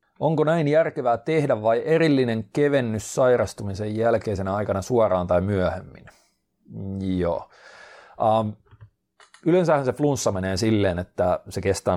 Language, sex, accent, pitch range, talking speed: Finnish, male, native, 95-135 Hz, 115 wpm